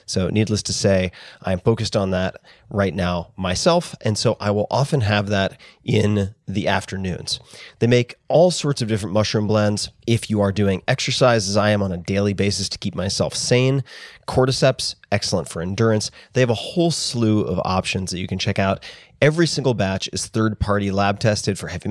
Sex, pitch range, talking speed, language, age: male, 95-120 Hz, 190 wpm, English, 30-49